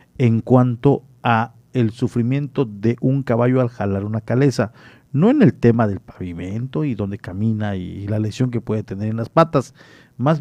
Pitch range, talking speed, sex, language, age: 105-130 Hz, 180 wpm, male, Spanish, 40-59